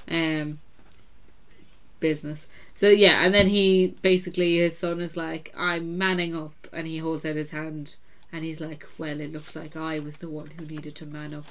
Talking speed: 195 wpm